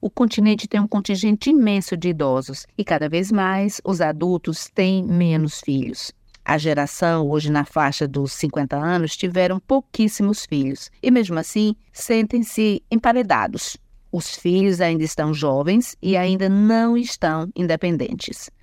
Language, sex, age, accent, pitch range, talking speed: Portuguese, female, 50-69, Brazilian, 155-210 Hz, 140 wpm